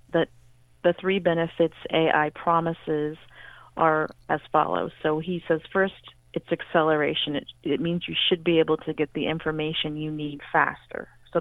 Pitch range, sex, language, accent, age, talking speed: 145-165 Hz, female, English, American, 40-59, 160 wpm